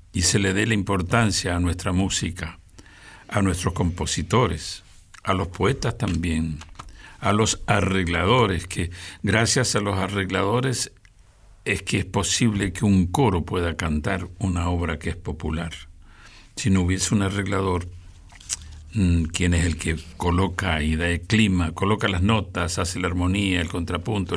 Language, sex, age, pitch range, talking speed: Spanish, male, 60-79, 85-110 Hz, 150 wpm